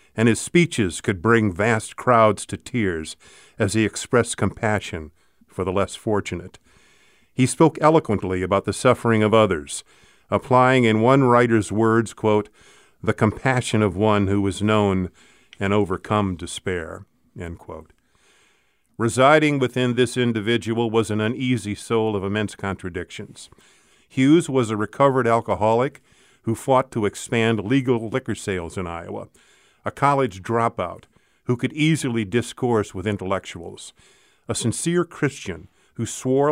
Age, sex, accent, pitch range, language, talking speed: 50-69, male, American, 100-120 Hz, English, 135 wpm